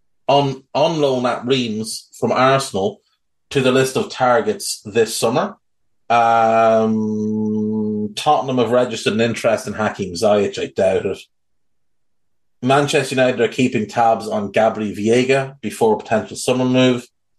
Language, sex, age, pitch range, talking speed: English, male, 30-49, 110-140 Hz, 130 wpm